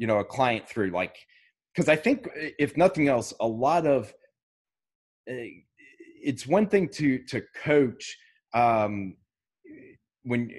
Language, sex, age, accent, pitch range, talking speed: English, male, 30-49, American, 110-155 Hz, 130 wpm